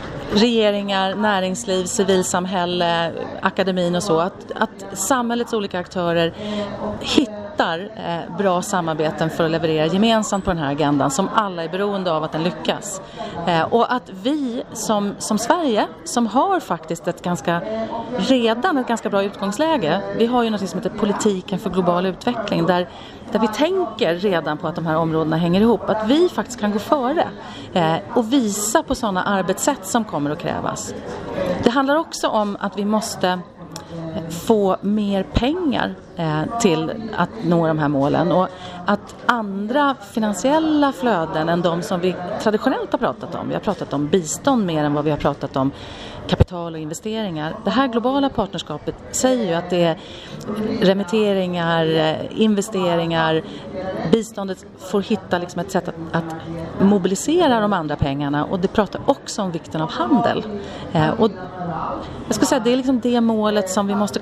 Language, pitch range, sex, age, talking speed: Swedish, 170-225 Hz, female, 30-49, 160 wpm